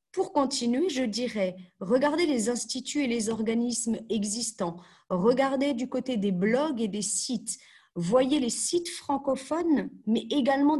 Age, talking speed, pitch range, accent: 40-59, 140 wpm, 195-255 Hz, French